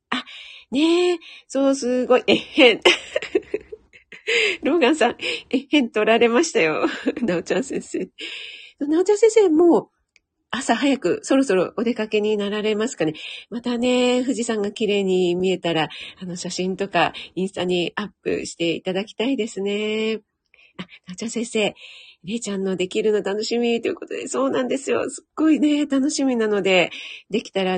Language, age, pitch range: Japanese, 40-59, 210-315 Hz